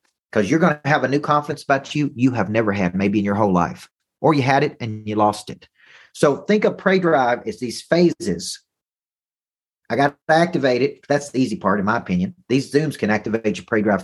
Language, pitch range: English, 115-160 Hz